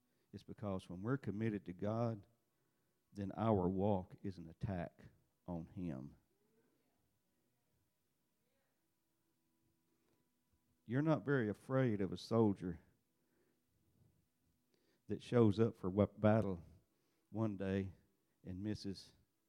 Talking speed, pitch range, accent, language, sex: 95 wpm, 85-110 Hz, American, English, male